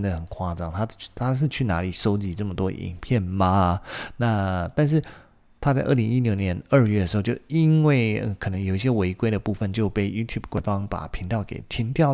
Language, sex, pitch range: Chinese, male, 95-120 Hz